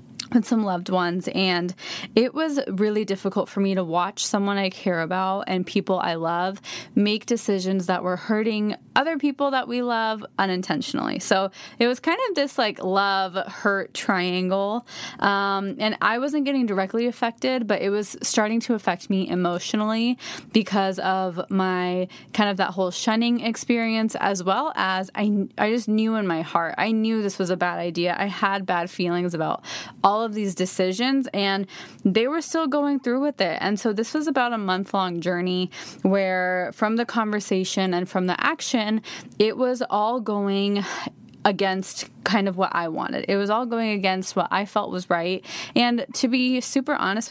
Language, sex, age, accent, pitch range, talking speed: English, female, 20-39, American, 185-230 Hz, 180 wpm